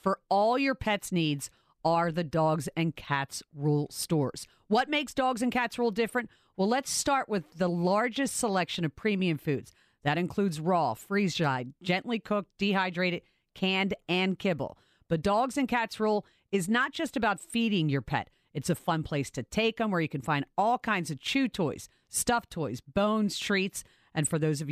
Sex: female